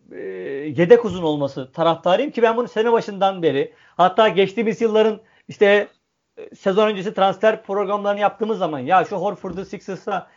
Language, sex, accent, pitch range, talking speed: Turkish, male, native, 180-230 Hz, 140 wpm